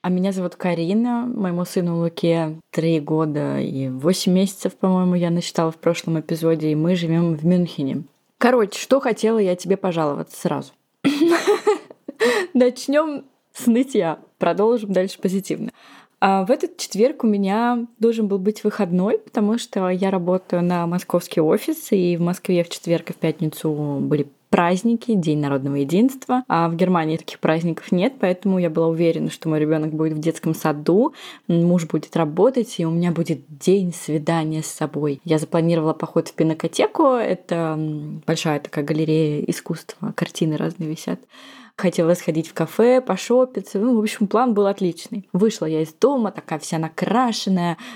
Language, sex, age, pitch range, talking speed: Russian, female, 20-39, 165-215 Hz, 155 wpm